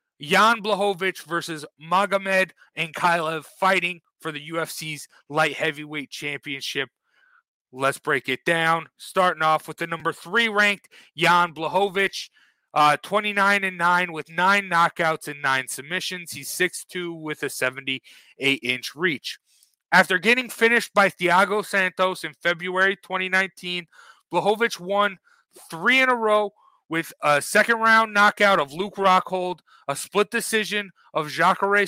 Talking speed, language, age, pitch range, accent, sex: 130 wpm, English, 30-49, 160-200 Hz, American, male